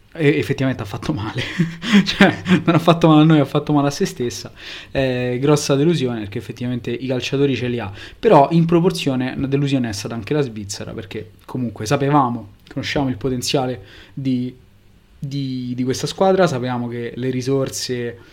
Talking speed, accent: 175 wpm, native